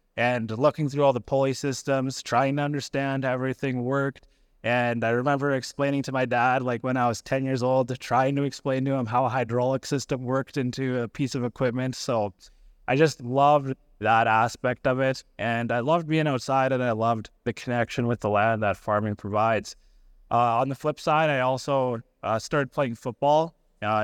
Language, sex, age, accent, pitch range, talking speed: English, male, 20-39, American, 120-140 Hz, 195 wpm